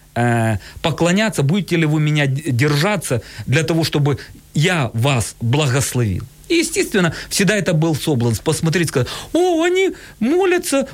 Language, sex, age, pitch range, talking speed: Ukrainian, male, 40-59, 150-230 Hz, 120 wpm